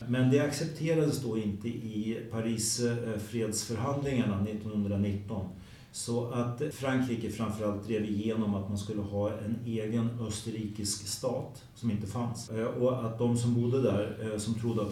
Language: Swedish